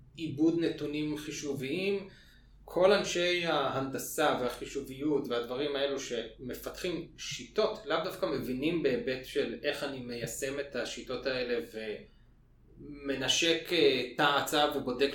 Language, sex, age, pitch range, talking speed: Hebrew, male, 20-39, 135-165 Hz, 105 wpm